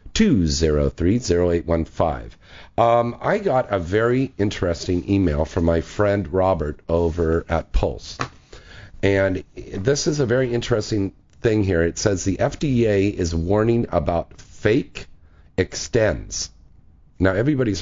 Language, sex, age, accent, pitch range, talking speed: English, male, 50-69, American, 80-100 Hz, 110 wpm